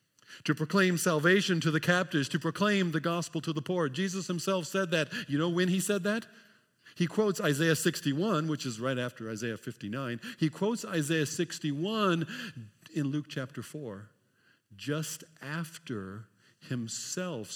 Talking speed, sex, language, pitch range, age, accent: 150 wpm, male, English, 115-165 Hz, 50-69, American